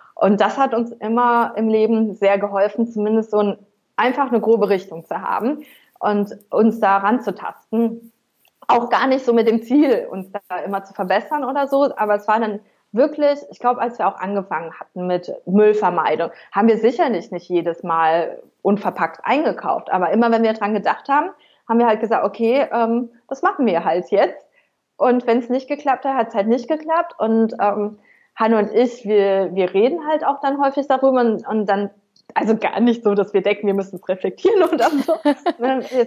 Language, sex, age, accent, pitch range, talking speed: German, female, 20-39, German, 200-245 Hz, 195 wpm